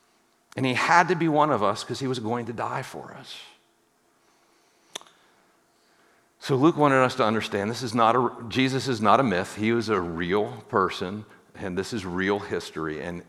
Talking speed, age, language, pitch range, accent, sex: 190 wpm, 50-69, English, 110-140 Hz, American, male